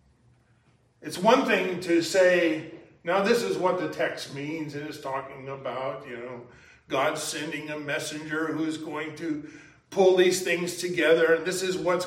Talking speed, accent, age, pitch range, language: 165 wpm, American, 50-69, 160-195 Hz, English